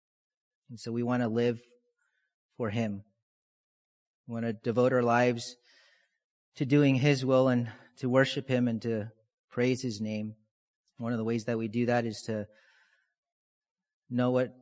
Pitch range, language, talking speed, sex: 115-145 Hz, English, 160 wpm, male